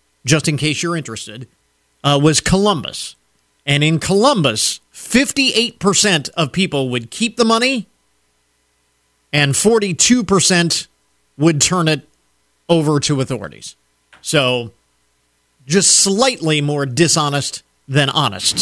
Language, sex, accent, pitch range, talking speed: English, male, American, 110-185 Hz, 105 wpm